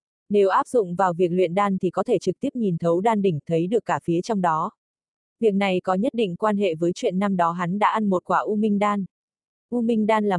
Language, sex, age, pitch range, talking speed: Vietnamese, female, 20-39, 180-220 Hz, 260 wpm